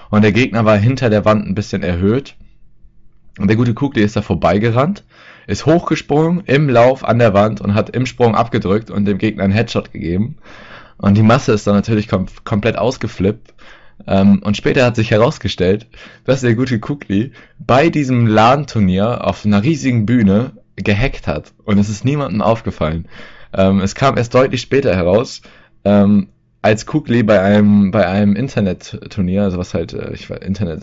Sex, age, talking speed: male, 20-39, 175 wpm